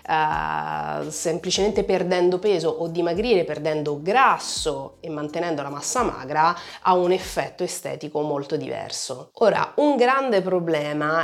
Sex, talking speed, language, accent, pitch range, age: female, 125 wpm, Italian, native, 155-195 Hz, 30-49